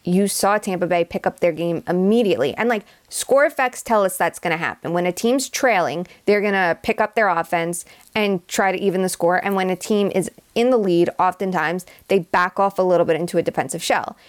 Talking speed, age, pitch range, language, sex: 230 wpm, 20-39, 175-210 Hz, English, female